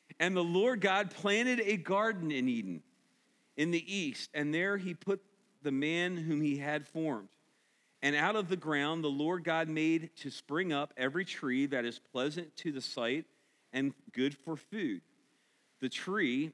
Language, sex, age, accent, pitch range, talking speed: English, male, 40-59, American, 140-180 Hz, 175 wpm